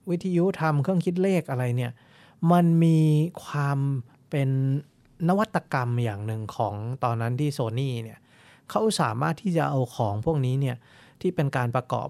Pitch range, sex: 125-160 Hz, male